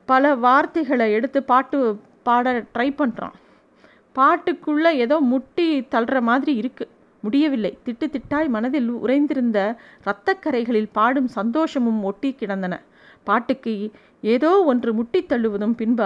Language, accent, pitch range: Tamil, native, 220-275 Hz